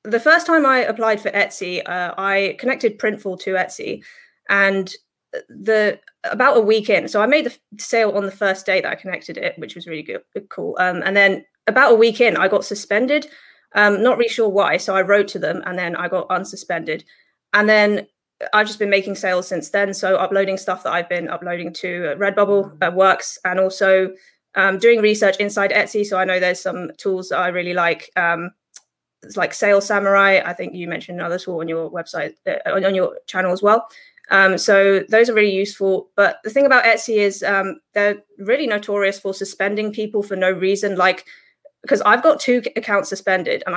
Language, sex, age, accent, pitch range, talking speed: English, female, 20-39, British, 185-215 Hz, 205 wpm